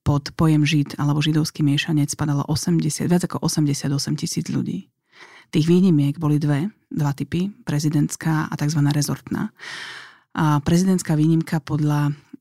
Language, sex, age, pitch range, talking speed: Slovak, female, 30-49, 145-160 Hz, 130 wpm